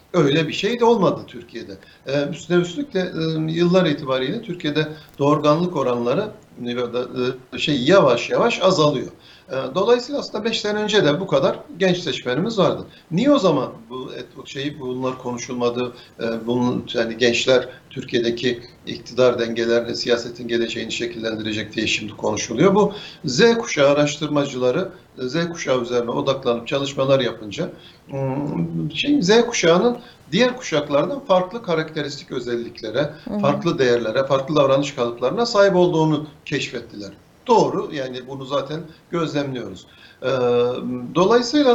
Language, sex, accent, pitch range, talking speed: Turkish, male, native, 120-170 Hz, 110 wpm